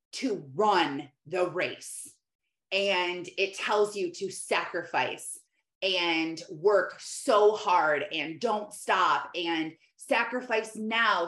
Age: 20-39